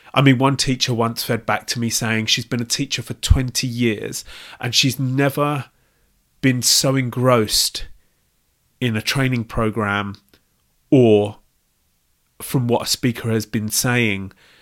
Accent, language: British, English